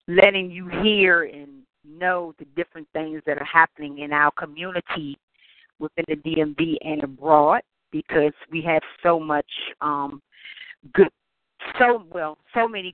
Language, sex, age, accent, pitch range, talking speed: English, female, 40-59, American, 155-205 Hz, 150 wpm